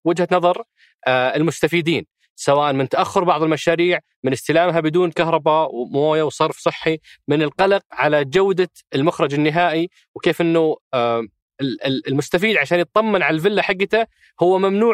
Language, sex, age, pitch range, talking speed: Arabic, male, 20-39, 140-180 Hz, 125 wpm